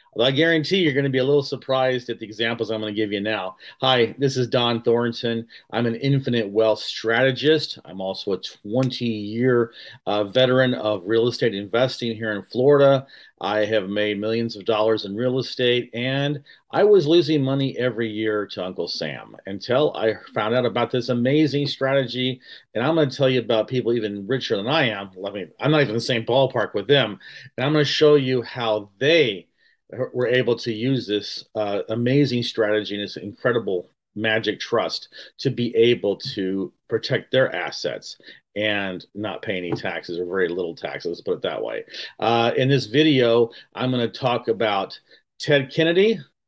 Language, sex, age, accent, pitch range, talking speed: English, male, 40-59, American, 110-140 Hz, 190 wpm